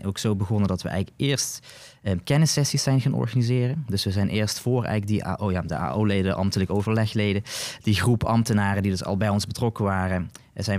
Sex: male